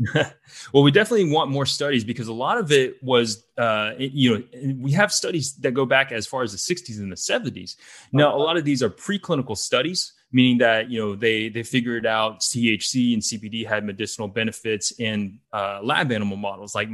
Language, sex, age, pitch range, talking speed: English, male, 20-39, 110-135 Hz, 205 wpm